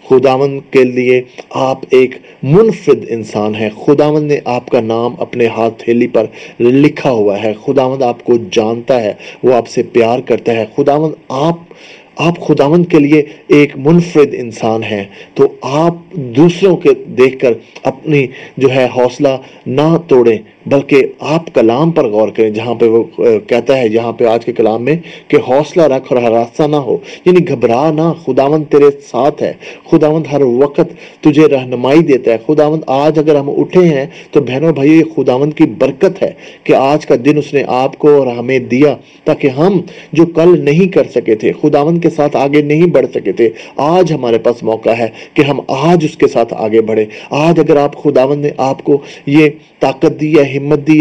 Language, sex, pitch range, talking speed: English, male, 130-160 Hz, 165 wpm